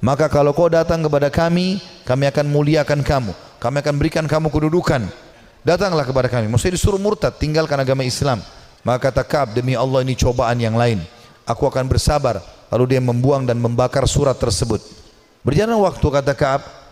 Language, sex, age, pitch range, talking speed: Indonesian, male, 30-49, 125-155 Hz, 165 wpm